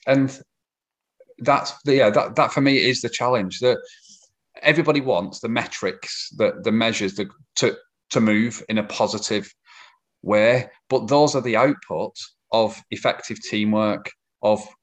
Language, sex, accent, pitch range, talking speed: English, male, British, 105-135 Hz, 145 wpm